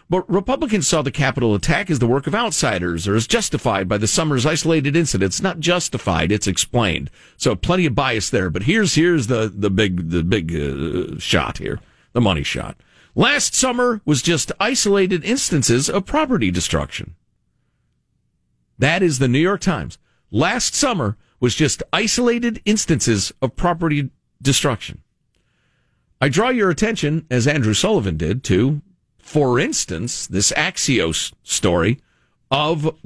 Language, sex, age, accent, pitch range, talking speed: English, male, 50-69, American, 115-195 Hz, 145 wpm